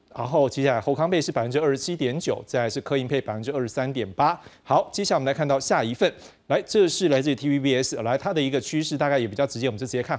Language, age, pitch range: Chinese, 30-49, 130-175 Hz